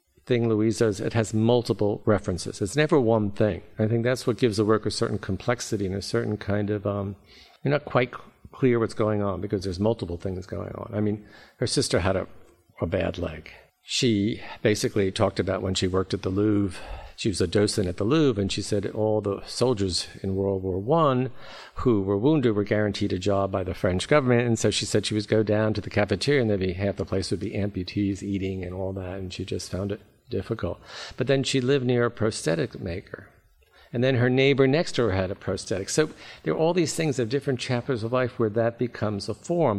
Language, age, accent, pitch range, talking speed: English, 50-69, American, 100-120 Hz, 230 wpm